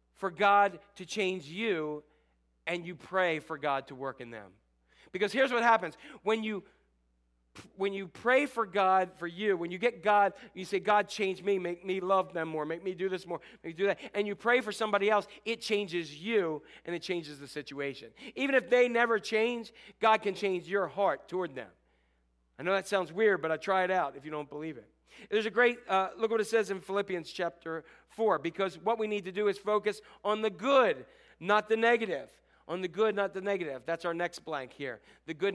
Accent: American